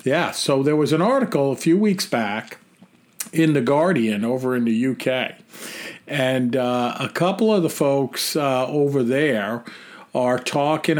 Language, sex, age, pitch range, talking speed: English, male, 50-69, 125-145 Hz, 160 wpm